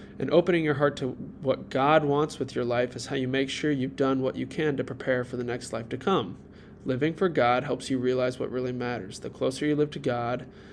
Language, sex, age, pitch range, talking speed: English, male, 20-39, 125-150 Hz, 245 wpm